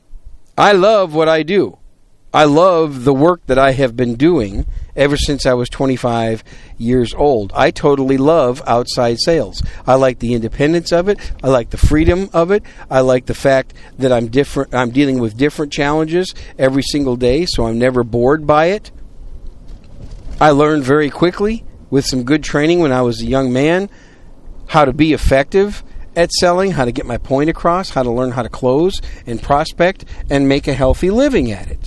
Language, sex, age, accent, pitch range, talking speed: English, male, 50-69, American, 125-180 Hz, 185 wpm